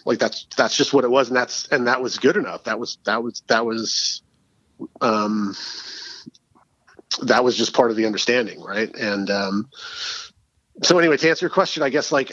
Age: 30-49